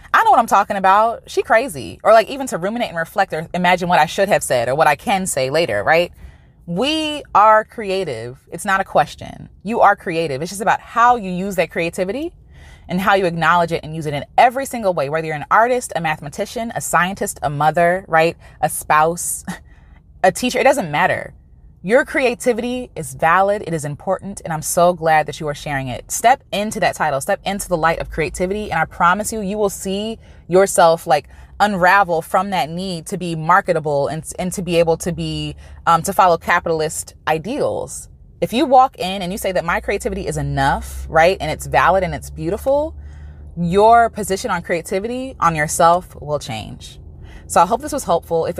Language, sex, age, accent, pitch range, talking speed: English, female, 20-39, American, 155-205 Hz, 205 wpm